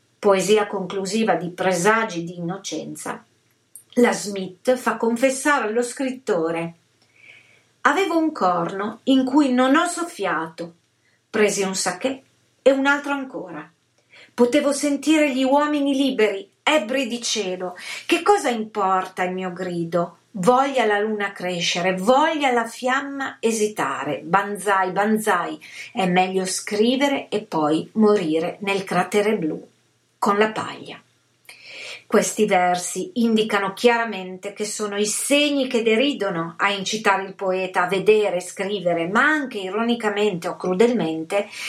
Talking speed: 120 wpm